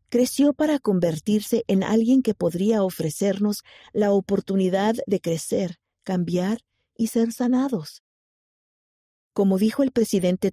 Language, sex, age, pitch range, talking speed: Spanish, female, 50-69, 175-225 Hz, 115 wpm